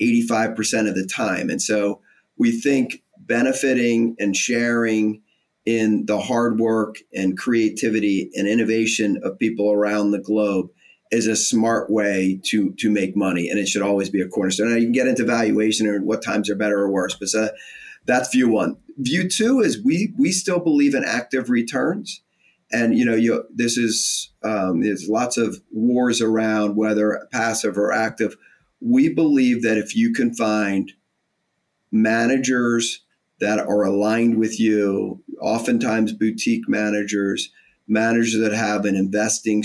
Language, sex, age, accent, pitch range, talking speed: English, male, 40-59, American, 105-120 Hz, 155 wpm